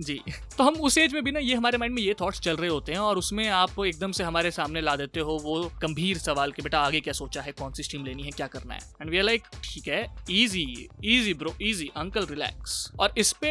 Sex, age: male, 20-39